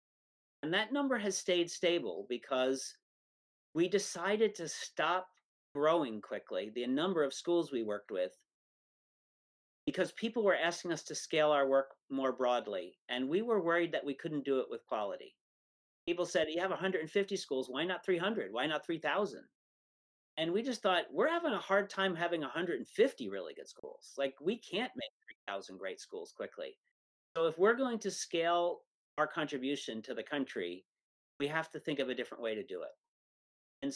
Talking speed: 175 wpm